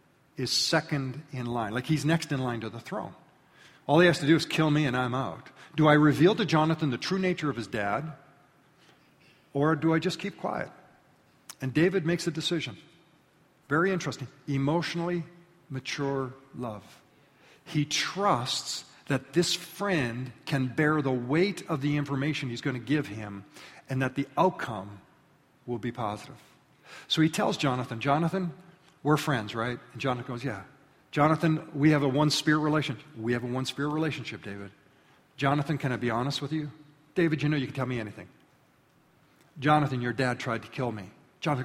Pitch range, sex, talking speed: 135-175 Hz, male, 175 wpm